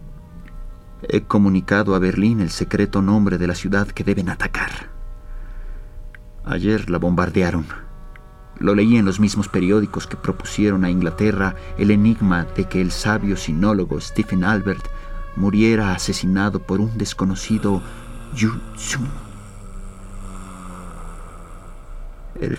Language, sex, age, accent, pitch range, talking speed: Spanish, male, 40-59, Mexican, 90-105 Hz, 110 wpm